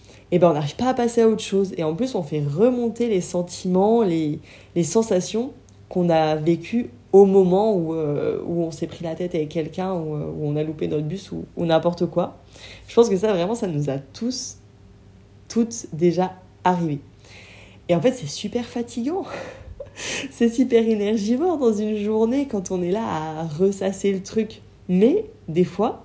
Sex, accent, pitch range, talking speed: female, French, 150-195 Hz, 190 wpm